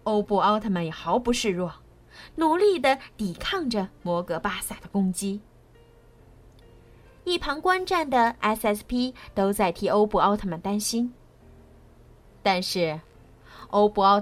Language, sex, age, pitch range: Chinese, female, 20-39, 185-260 Hz